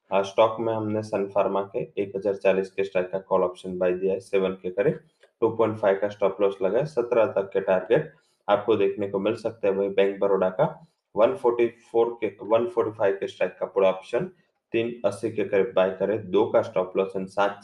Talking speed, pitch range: 135 wpm, 95-105 Hz